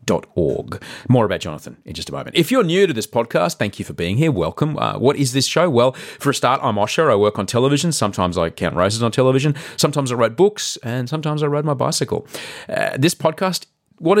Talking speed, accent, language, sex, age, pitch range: 230 wpm, Australian, English, male, 30-49, 105-150 Hz